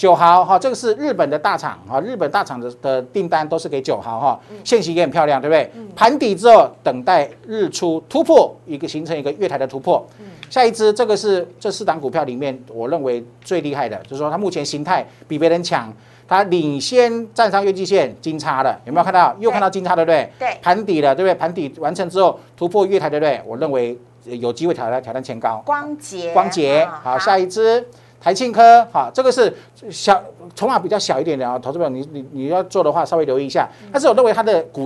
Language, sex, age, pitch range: Chinese, male, 50-69, 135-200 Hz